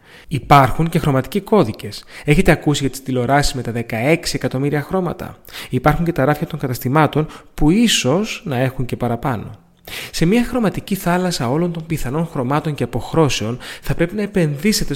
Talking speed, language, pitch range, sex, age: 160 wpm, Greek, 125-170 Hz, male, 30-49